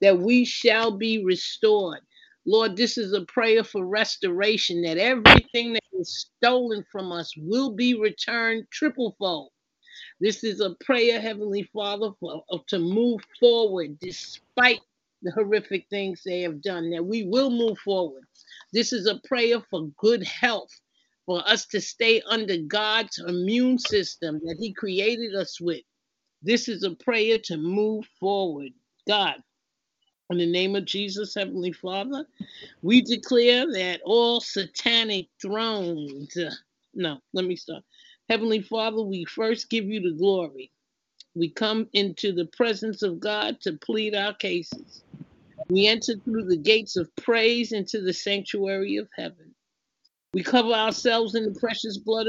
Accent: American